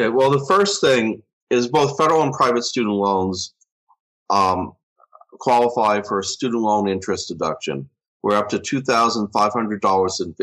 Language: English